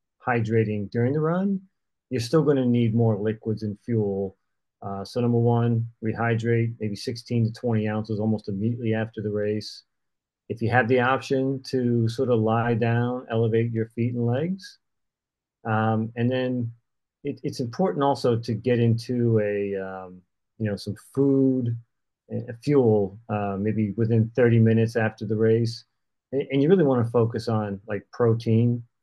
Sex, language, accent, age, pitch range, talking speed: male, English, American, 40-59, 105-125 Hz, 155 wpm